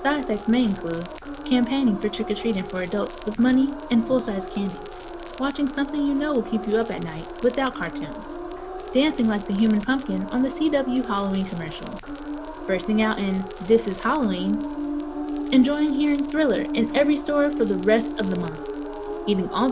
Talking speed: 170 wpm